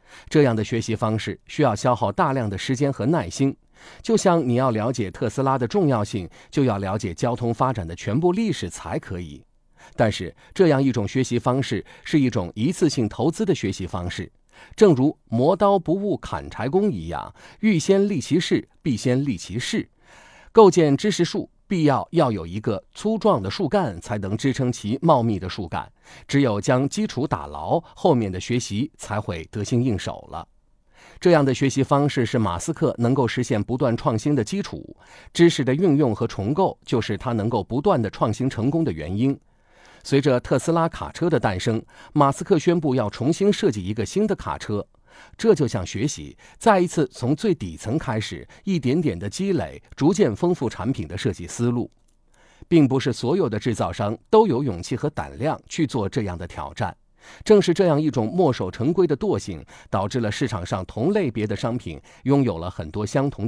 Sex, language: male, Chinese